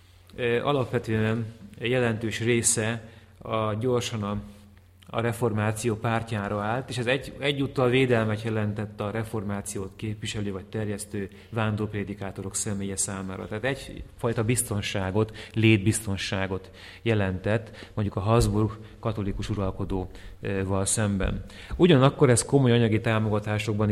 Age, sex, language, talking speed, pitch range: 30-49, male, English, 100 wpm, 100-115 Hz